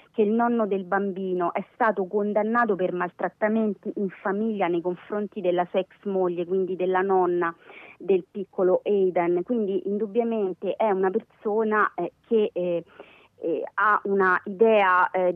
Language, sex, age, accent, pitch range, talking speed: Italian, female, 30-49, native, 185-220 Hz, 145 wpm